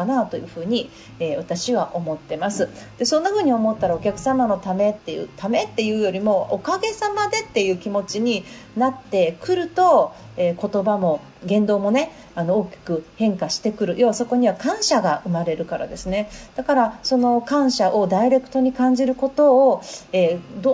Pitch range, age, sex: 190-265 Hz, 40-59, female